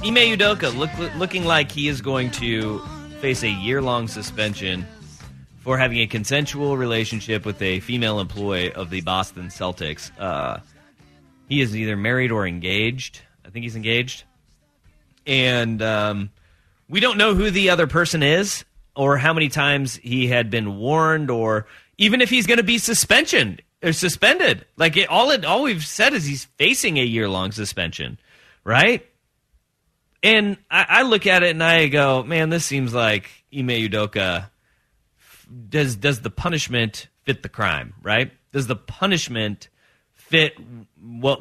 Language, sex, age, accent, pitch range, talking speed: English, male, 30-49, American, 105-150 Hz, 155 wpm